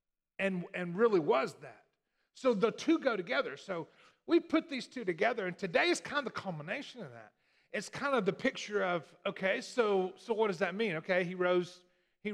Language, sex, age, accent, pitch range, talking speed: English, male, 40-59, American, 185-235 Hz, 205 wpm